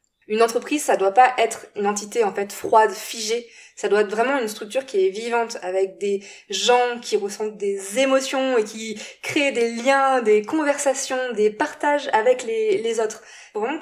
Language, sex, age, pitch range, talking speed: French, female, 20-39, 205-265 Hz, 180 wpm